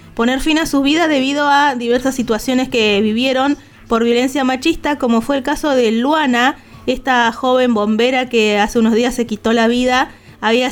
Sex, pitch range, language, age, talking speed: female, 230-270 Hz, Spanish, 20-39, 180 wpm